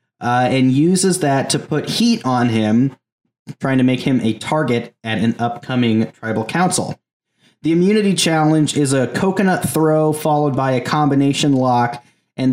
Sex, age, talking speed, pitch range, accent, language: male, 30-49, 160 wpm, 120-150 Hz, American, English